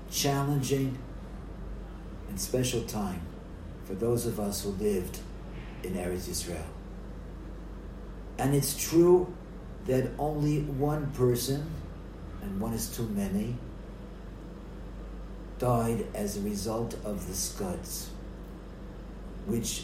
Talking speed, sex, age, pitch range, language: 100 wpm, male, 50-69, 100-140 Hz, English